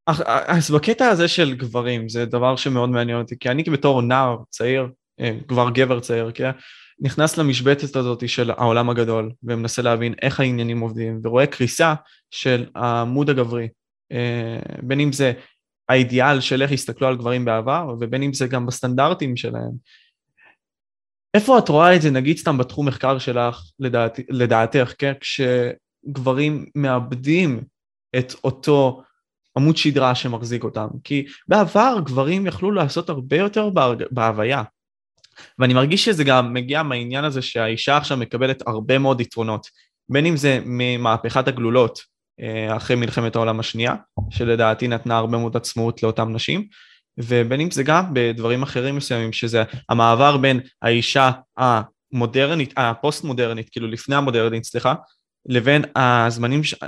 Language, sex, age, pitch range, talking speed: Hebrew, male, 20-39, 120-140 Hz, 135 wpm